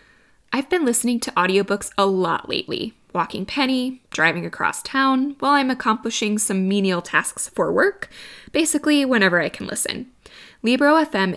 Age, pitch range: 20-39, 190-255 Hz